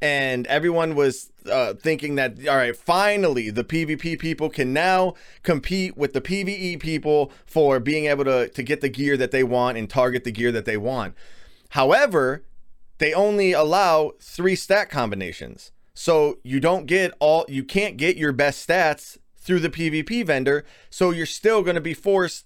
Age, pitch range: 20-39, 130-165 Hz